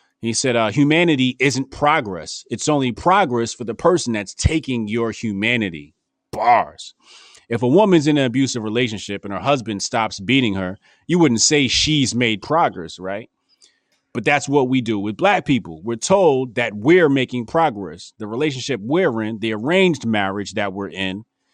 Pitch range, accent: 100-125 Hz, American